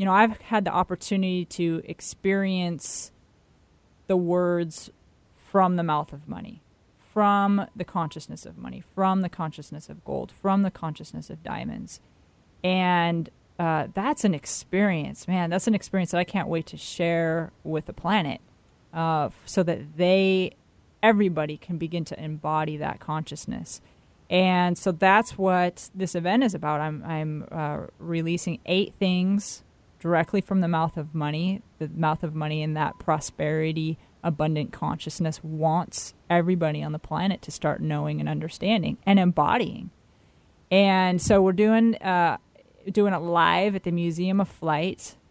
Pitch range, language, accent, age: 155-190 Hz, English, American, 30-49